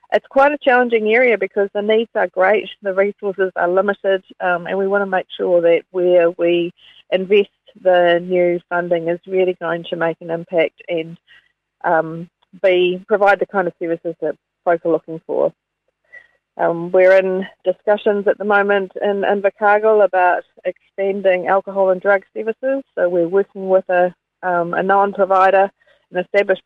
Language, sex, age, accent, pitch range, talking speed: English, female, 40-59, Australian, 175-200 Hz, 165 wpm